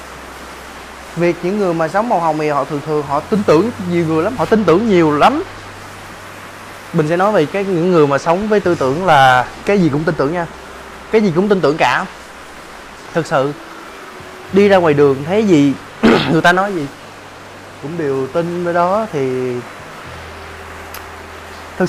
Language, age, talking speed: Vietnamese, 20-39, 185 wpm